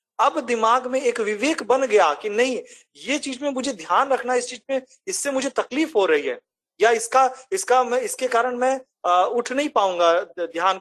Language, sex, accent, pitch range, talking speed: Hindi, male, native, 195-285 Hz, 200 wpm